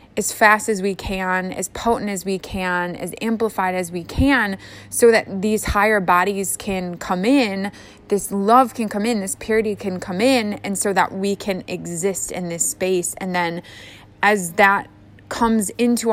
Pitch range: 190-225 Hz